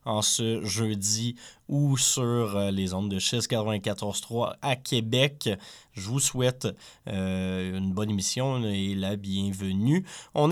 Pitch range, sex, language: 100-125 Hz, male, French